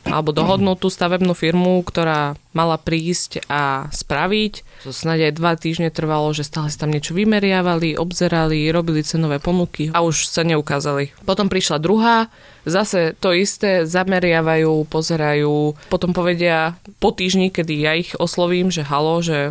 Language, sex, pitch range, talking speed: Slovak, female, 150-175 Hz, 150 wpm